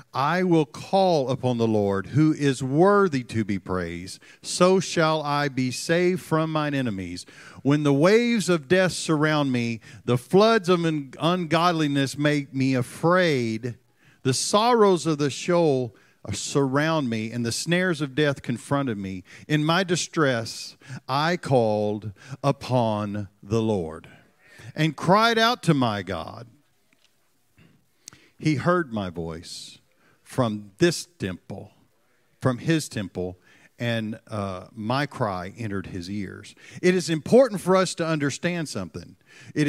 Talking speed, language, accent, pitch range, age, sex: 135 wpm, English, American, 110-155 Hz, 50-69, male